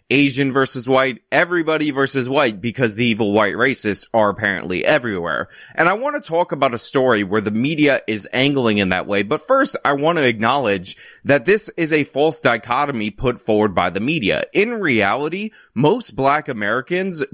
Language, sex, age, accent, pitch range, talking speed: English, male, 20-39, American, 110-155 Hz, 180 wpm